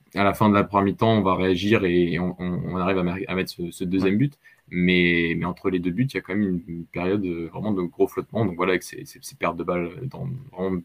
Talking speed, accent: 275 wpm, French